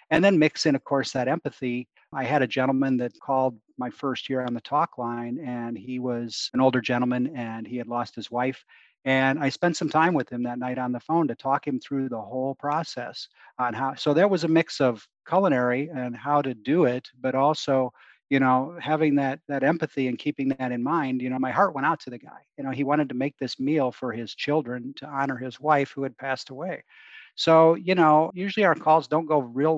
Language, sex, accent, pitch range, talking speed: English, male, American, 125-150 Hz, 235 wpm